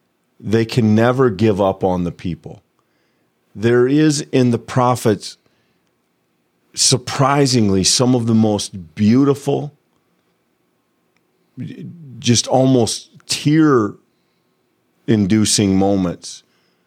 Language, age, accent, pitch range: English, 40-59, American, 95-120 Hz